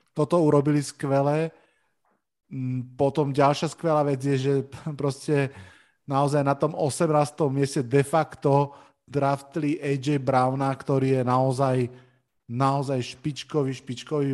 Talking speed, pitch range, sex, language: 110 wpm, 130-150 Hz, male, Slovak